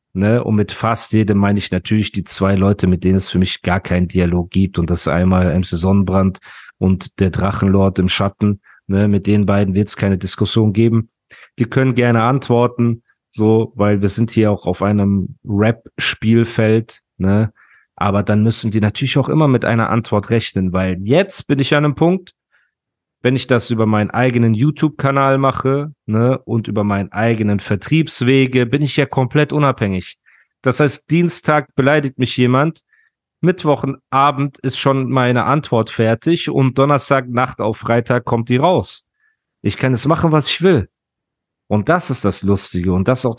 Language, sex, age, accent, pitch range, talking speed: German, male, 30-49, German, 100-135 Hz, 170 wpm